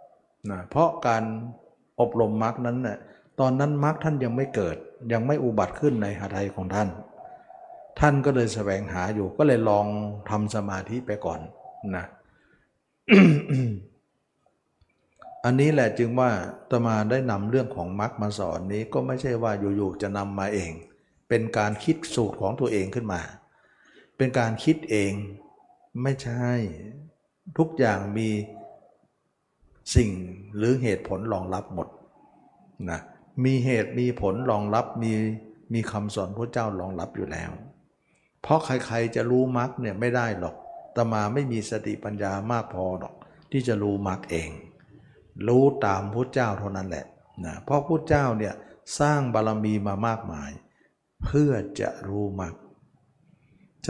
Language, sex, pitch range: Thai, male, 105-130 Hz